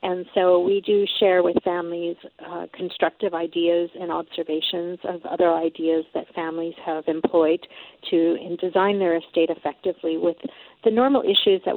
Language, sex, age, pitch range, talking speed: English, female, 50-69, 170-195 Hz, 150 wpm